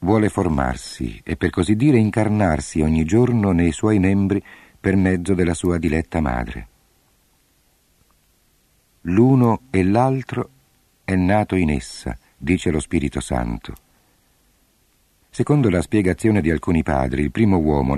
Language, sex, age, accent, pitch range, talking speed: Italian, male, 50-69, native, 80-105 Hz, 125 wpm